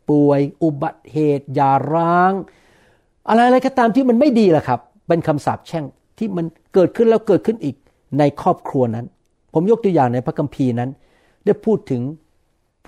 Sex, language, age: male, Thai, 60-79